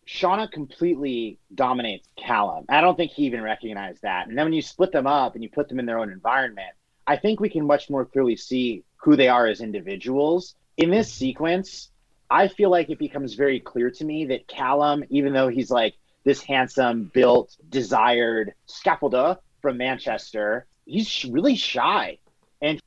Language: English